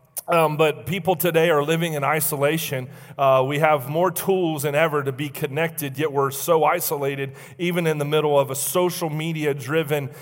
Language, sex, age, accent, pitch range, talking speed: English, male, 30-49, American, 150-170 Hz, 175 wpm